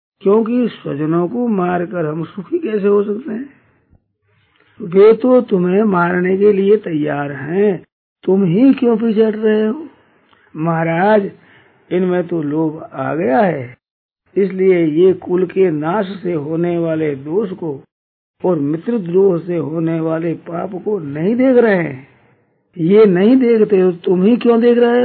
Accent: native